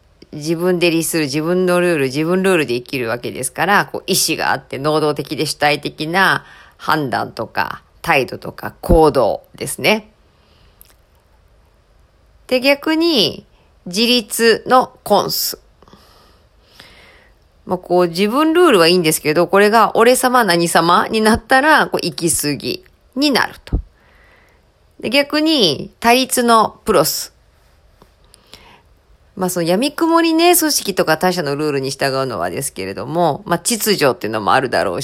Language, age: Japanese, 40-59